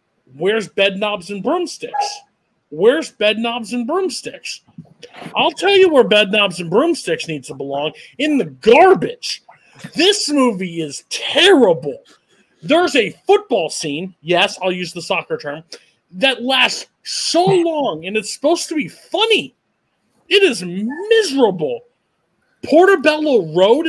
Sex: male